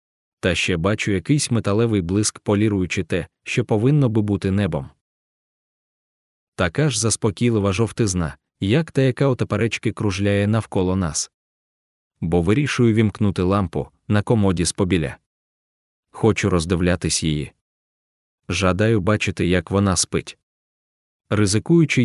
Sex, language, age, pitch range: male, Russian, 20-39, 95-115 Hz